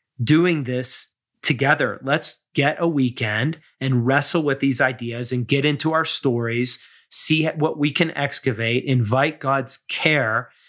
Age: 30-49